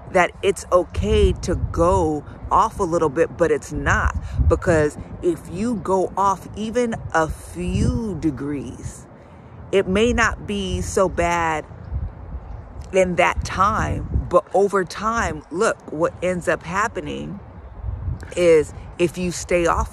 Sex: female